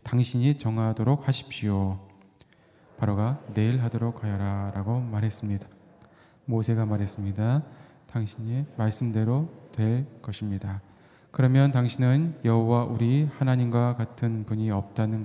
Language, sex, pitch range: Korean, male, 105-130 Hz